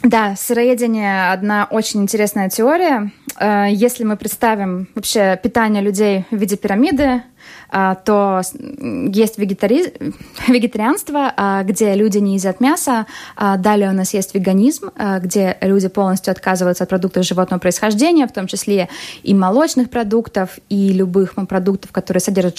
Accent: native